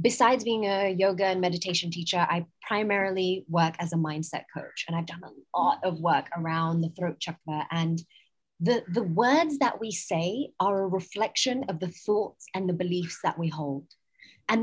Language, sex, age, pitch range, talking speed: English, female, 20-39, 185-255 Hz, 185 wpm